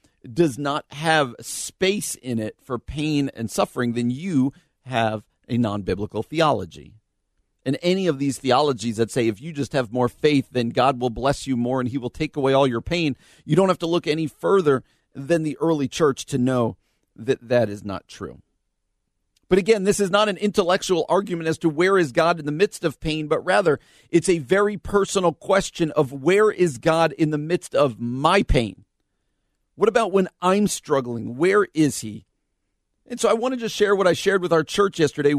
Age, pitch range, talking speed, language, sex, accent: 50-69, 120-170 Hz, 200 wpm, English, male, American